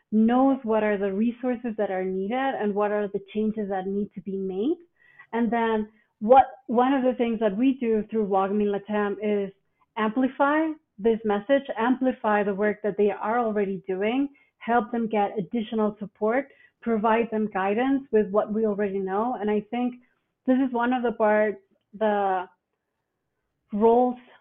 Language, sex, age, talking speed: English, female, 30-49, 165 wpm